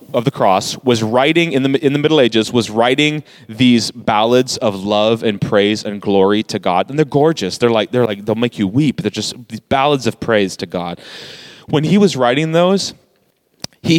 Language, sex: English, male